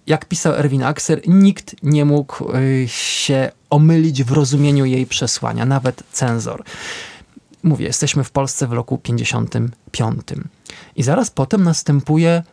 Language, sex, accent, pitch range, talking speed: Polish, male, native, 125-155 Hz, 125 wpm